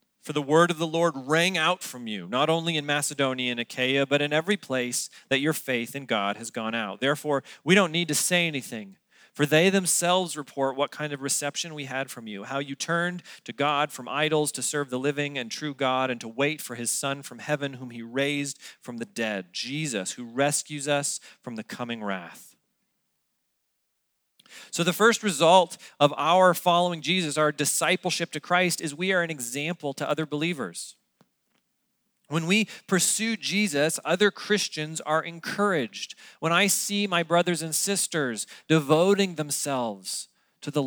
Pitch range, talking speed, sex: 135-175 Hz, 180 wpm, male